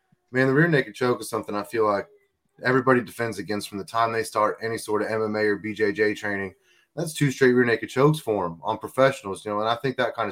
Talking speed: 245 wpm